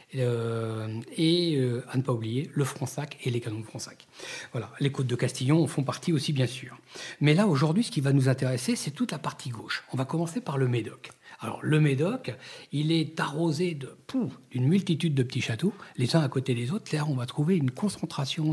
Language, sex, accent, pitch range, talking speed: French, male, French, 120-150 Hz, 215 wpm